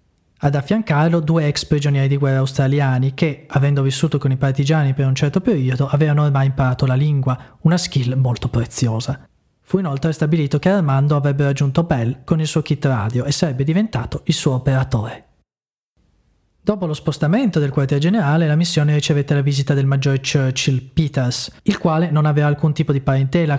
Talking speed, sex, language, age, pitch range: 175 wpm, male, Italian, 30-49, 135-155 Hz